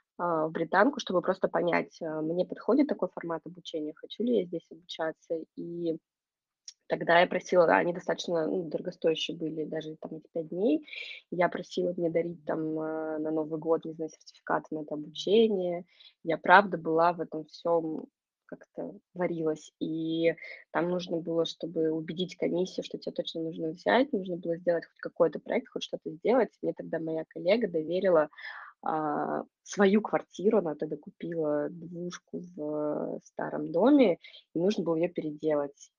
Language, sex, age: Russian, female, 20-39